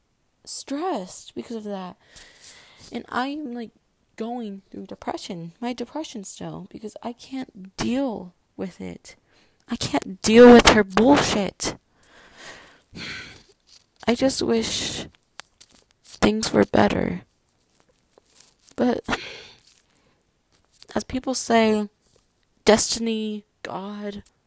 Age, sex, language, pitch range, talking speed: 20-39, female, English, 205-255 Hz, 90 wpm